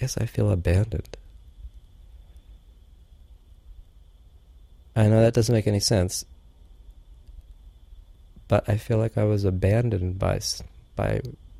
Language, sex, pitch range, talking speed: English, male, 75-110 Hz, 105 wpm